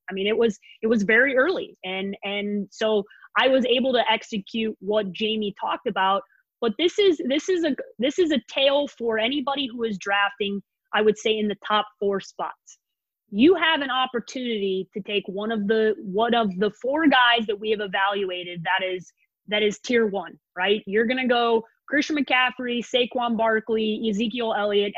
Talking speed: 185 wpm